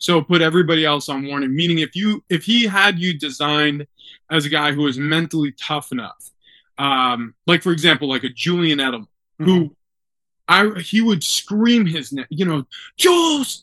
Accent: American